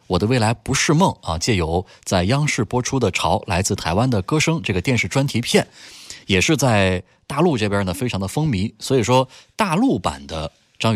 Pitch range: 85-120 Hz